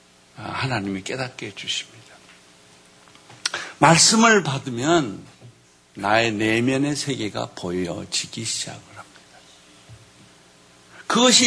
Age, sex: 60-79, male